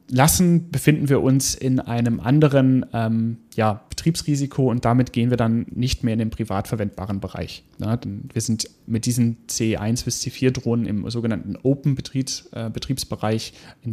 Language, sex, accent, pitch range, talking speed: German, male, German, 110-145 Hz, 140 wpm